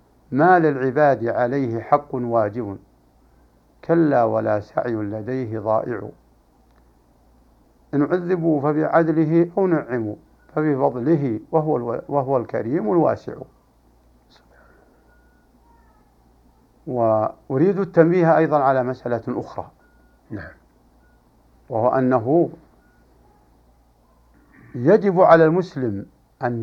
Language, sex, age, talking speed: Arabic, male, 60-79, 70 wpm